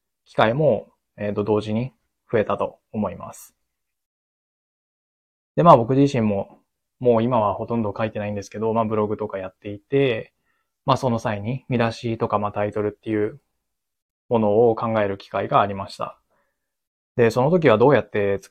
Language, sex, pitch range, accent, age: Japanese, male, 105-125 Hz, native, 20-39